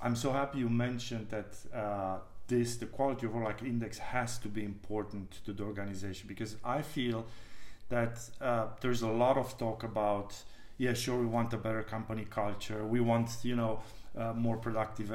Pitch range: 110-130 Hz